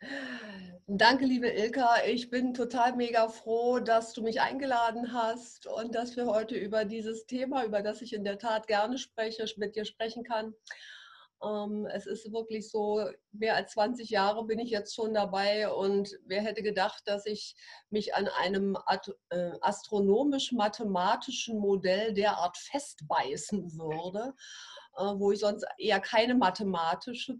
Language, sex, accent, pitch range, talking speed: German, female, German, 205-240 Hz, 140 wpm